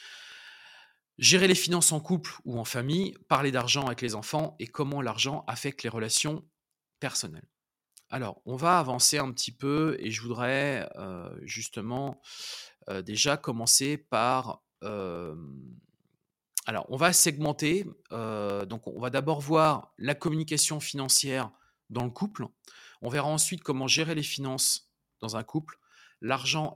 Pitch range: 120-160 Hz